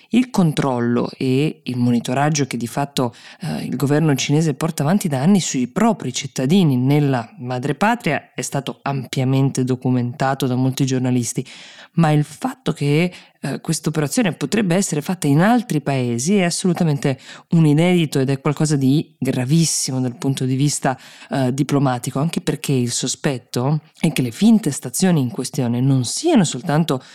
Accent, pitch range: native, 130-165 Hz